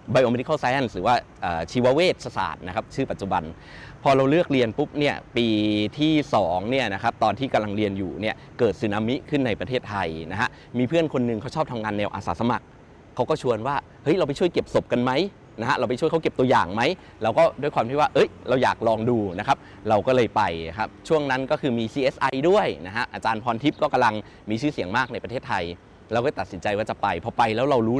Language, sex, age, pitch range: Thai, male, 20-39, 105-140 Hz